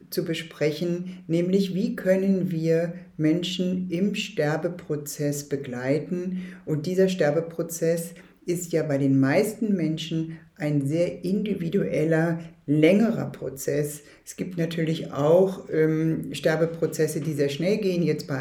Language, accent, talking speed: German, German, 115 wpm